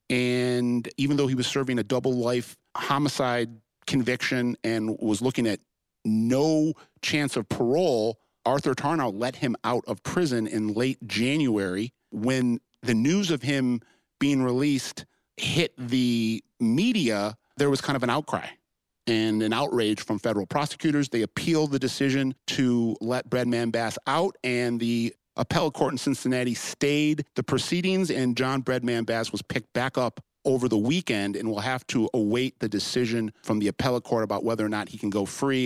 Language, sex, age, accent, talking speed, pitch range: English, male, 50-69, American, 165 wpm, 115-135 Hz